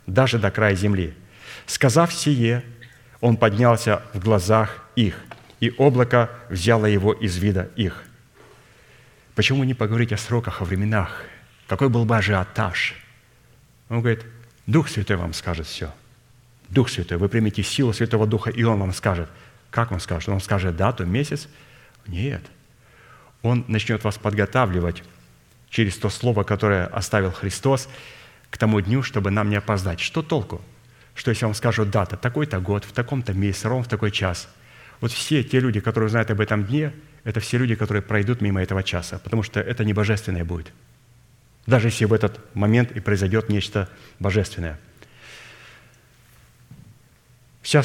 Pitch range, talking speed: 100-120 Hz, 150 wpm